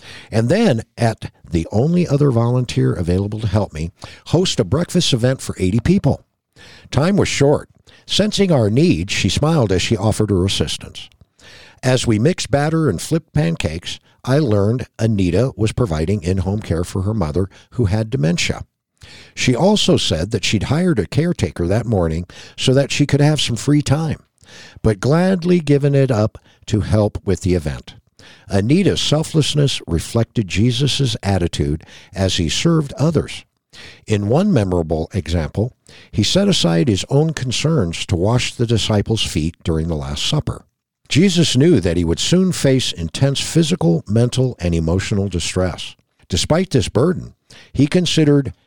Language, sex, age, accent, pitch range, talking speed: English, male, 60-79, American, 95-145 Hz, 155 wpm